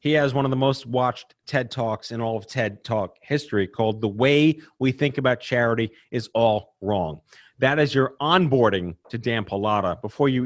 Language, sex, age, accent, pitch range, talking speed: English, male, 40-59, American, 115-150 Hz, 195 wpm